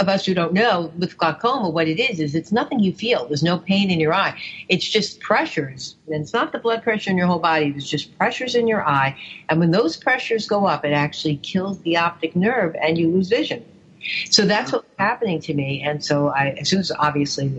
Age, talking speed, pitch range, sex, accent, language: 50-69, 235 wpm, 155-195 Hz, female, American, English